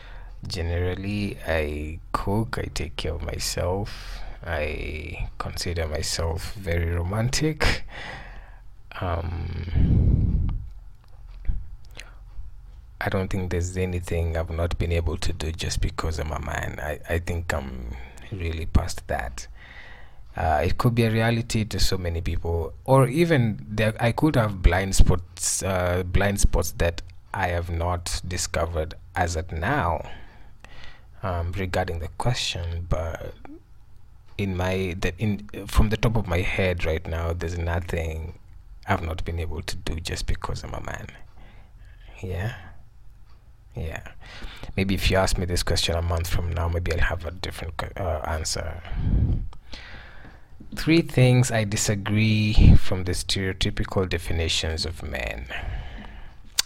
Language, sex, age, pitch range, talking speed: English, male, 20-39, 85-105 Hz, 135 wpm